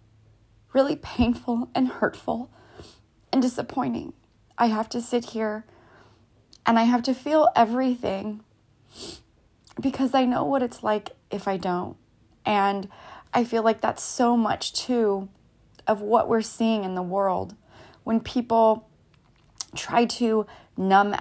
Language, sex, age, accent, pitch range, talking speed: English, female, 20-39, American, 190-245 Hz, 130 wpm